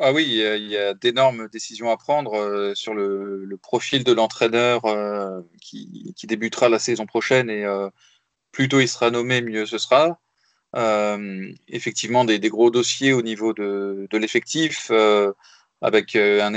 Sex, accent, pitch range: male, French, 105-125 Hz